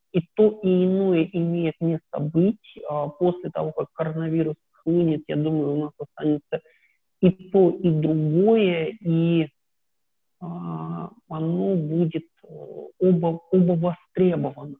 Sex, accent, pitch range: male, native, 155-185 Hz